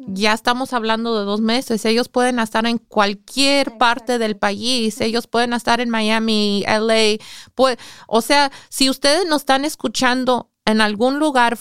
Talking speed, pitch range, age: 155 wpm, 220-260 Hz, 30-49